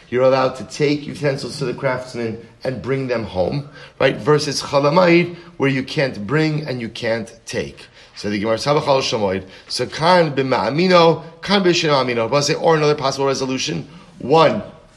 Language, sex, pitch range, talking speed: English, male, 120-150 Hz, 155 wpm